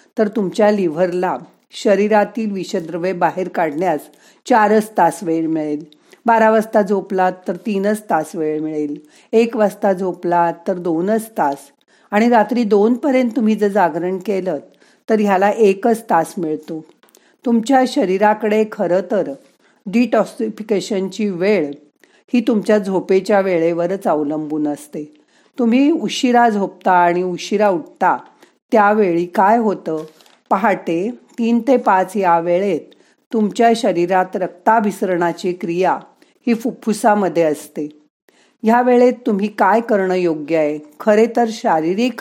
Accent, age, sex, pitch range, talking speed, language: native, 50-69, female, 175-225 Hz, 110 wpm, Marathi